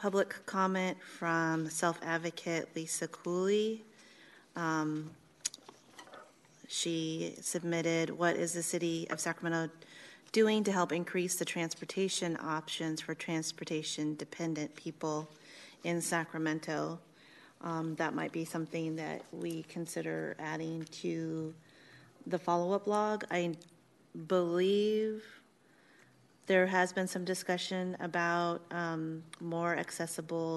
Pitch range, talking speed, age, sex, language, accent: 160-175 Hz, 100 wpm, 30-49, female, English, American